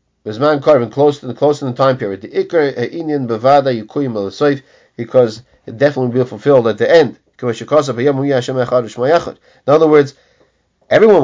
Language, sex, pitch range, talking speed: English, male, 120-145 Hz, 105 wpm